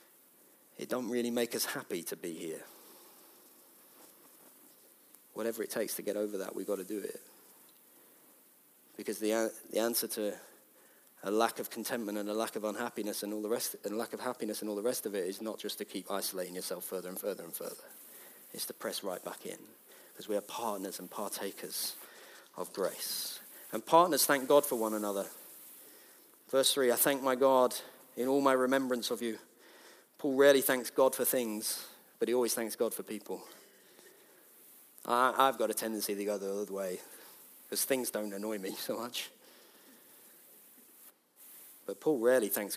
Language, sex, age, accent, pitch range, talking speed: English, male, 40-59, British, 105-135 Hz, 180 wpm